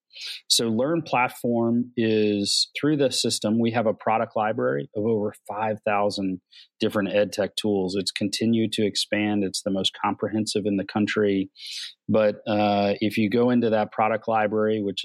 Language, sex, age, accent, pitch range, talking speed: English, male, 30-49, American, 105-115 Hz, 160 wpm